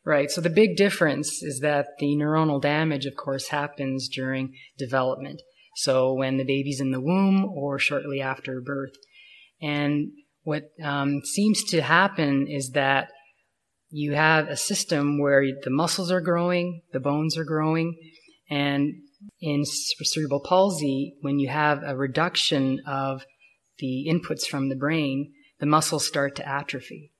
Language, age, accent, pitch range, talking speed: English, 20-39, American, 135-160 Hz, 150 wpm